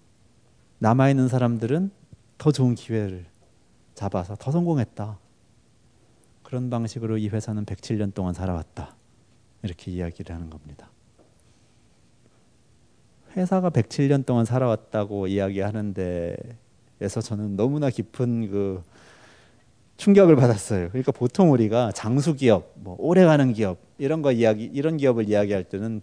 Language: Korean